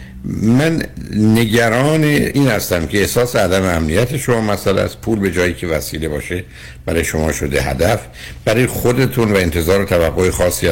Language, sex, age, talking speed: Persian, male, 60-79, 150 wpm